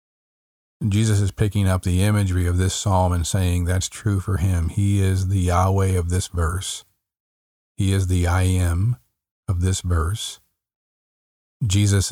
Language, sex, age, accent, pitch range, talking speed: English, male, 50-69, American, 90-100 Hz, 155 wpm